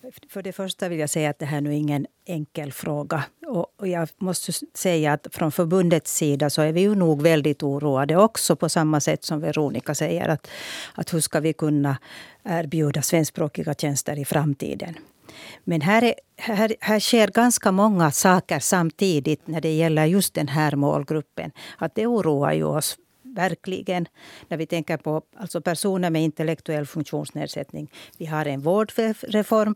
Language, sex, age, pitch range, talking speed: Swedish, female, 60-79, 150-195 Hz, 160 wpm